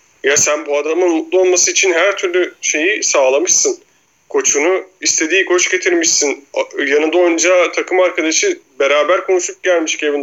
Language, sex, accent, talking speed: Turkish, male, native, 135 wpm